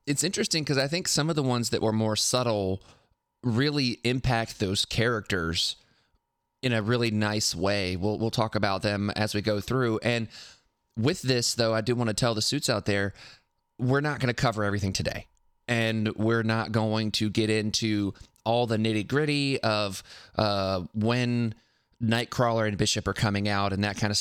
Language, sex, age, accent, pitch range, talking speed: English, male, 30-49, American, 105-125 Hz, 185 wpm